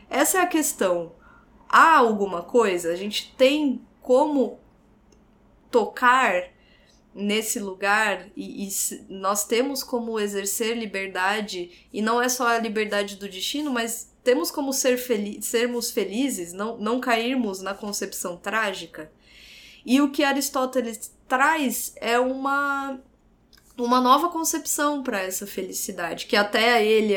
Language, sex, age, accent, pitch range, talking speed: Portuguese, female, 20-39, Brazilian, 200-270 Hz, 135 wpm